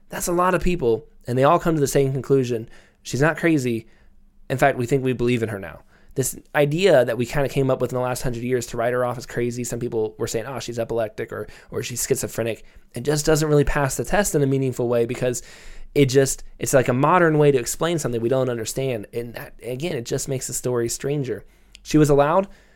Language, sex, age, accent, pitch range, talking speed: English, male, 20-39, American, 120-155 Hz, 245 wpm